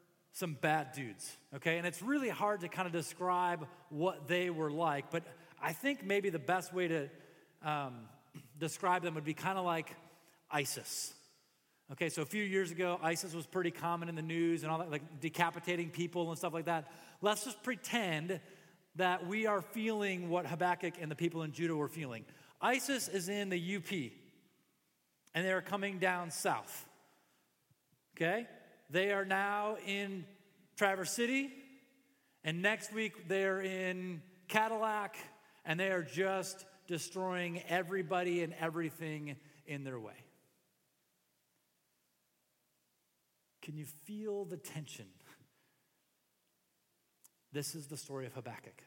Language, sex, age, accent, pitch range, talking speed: English, male, 30-49, American, 150-190 Hz, 145 wpm